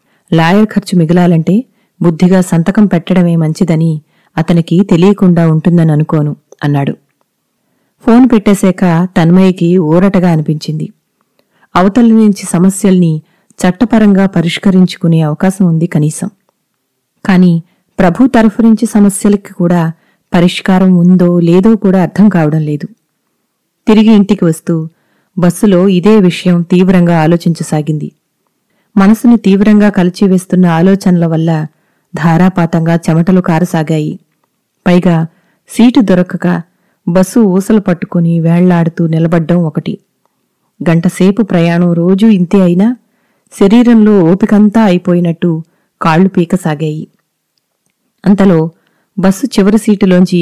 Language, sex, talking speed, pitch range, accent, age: Telugu, female, 90 wpm, 170-205 Hz, native, 30-49